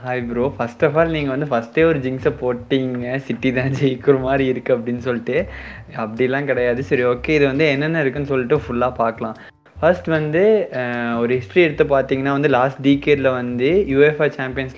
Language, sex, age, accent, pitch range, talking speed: Tamil, male, 20-39, native, 125-150 Hz, 170 wpm